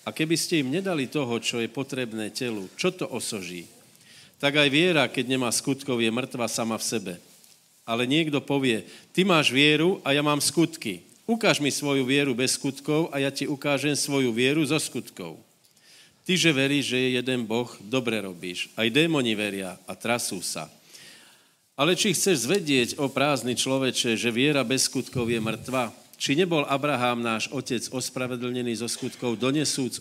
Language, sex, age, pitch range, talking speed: Slovak, male, 50-69, 120-145 Hz, 170 wpm